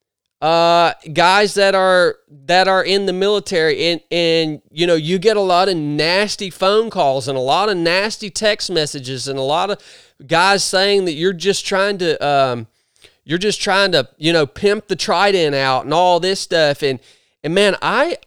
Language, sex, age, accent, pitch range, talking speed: English, male, 30-49, American, 175-265 Hz, 190 wpm